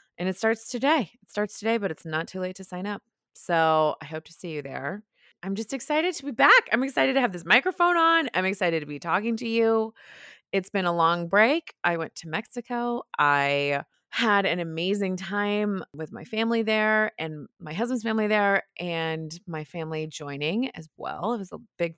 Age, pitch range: 20-39, 155-215 Hz